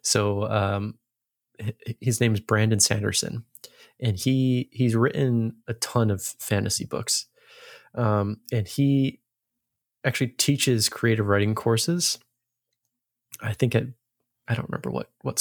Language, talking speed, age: English, 125 wpm, 20-39